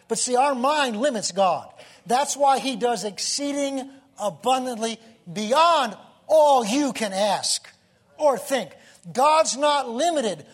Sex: male